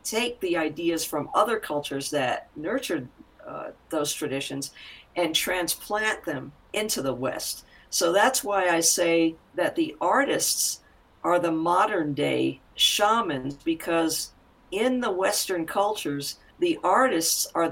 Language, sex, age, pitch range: English, female, 50-69, 160-210 Hz